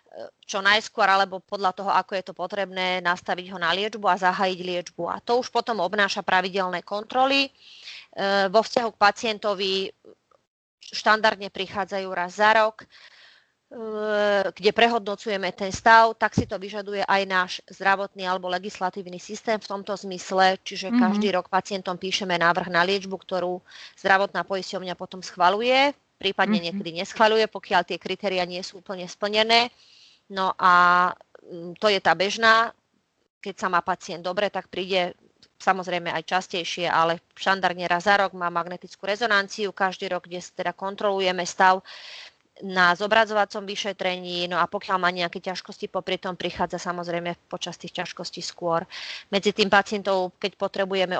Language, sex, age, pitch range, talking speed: Slovak, female, 30-49, 180-205 Hz, 145 wpm